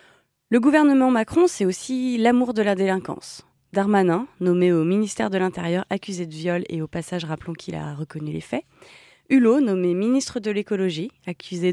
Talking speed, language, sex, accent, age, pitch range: 170 wpm, French, female, French, 20-39, 175-230 Hz